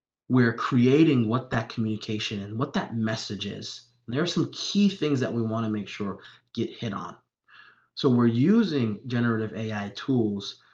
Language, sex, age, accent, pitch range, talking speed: English, male, 30-49, American, 110-135 Hz, 170 wpm